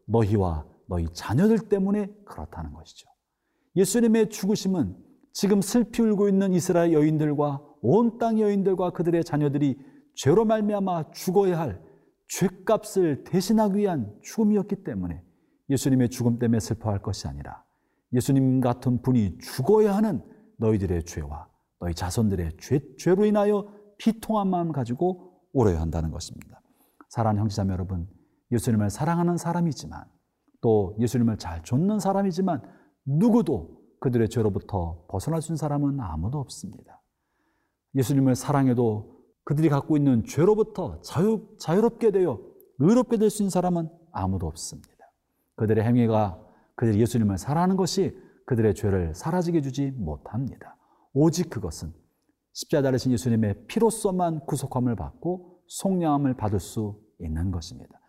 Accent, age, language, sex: native, 40-59, Korean, male